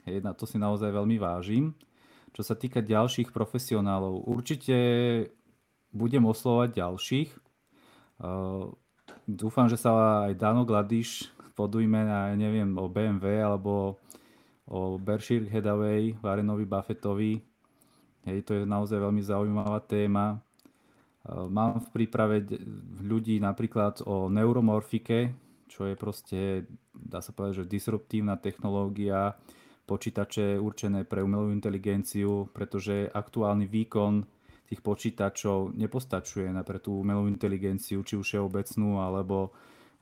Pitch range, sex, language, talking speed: 100-110 Hz, male, Slovak, 120 wpm